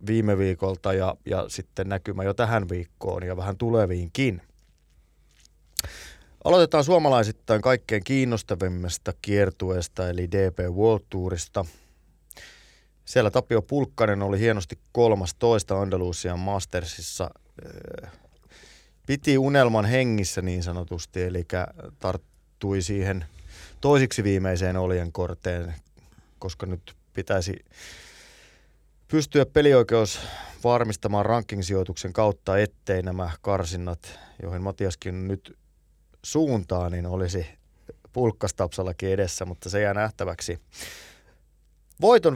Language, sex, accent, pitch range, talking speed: Finnish, male, native, 85-110 Hz, 90 wpm